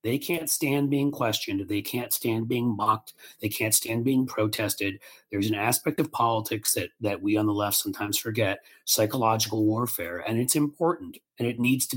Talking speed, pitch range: 185 wpm, 105-135 Hz